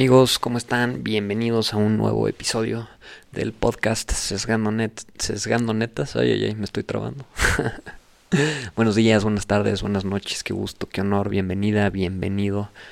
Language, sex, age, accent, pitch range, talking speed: Spanish, male, 20-39, Mexican, 105-120 Hz, 145 wpm